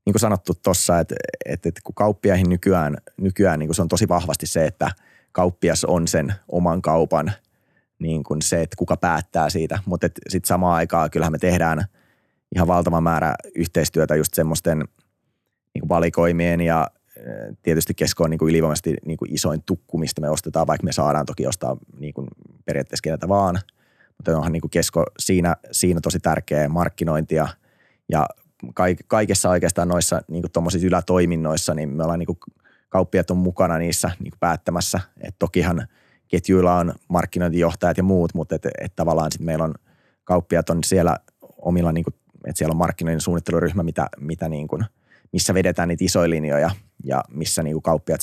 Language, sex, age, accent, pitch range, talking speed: Finnish, male, 30-49, native, 80-90 Hz, 165 wpm